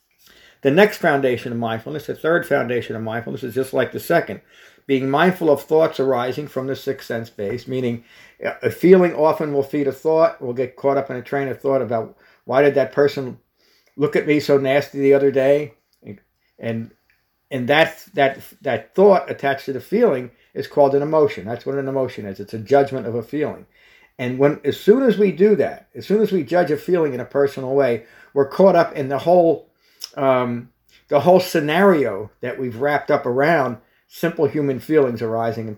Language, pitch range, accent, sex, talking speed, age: English, 125-155 Hz, American, male, 200 wpm, 50-69